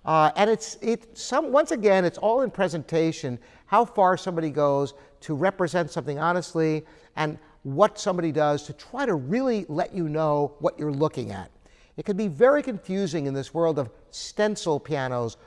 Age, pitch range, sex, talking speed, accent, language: 50-69, 150-195 Hz, male, 175 wpm, American, English